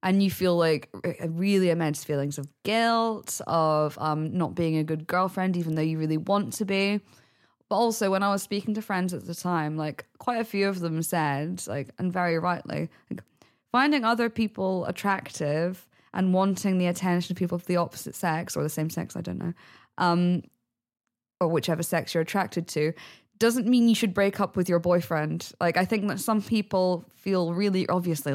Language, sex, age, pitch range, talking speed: English, female, 20-39, 155-185 Hz, 195 wpm